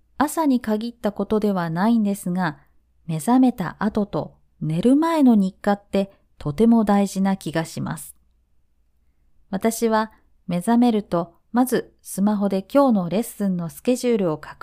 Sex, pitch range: female, 160-235 Hz